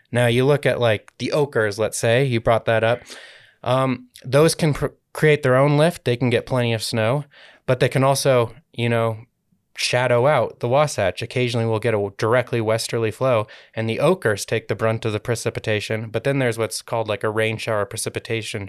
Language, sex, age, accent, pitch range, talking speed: English, male, 20-39, American, 110-125 Hz, 200 wpm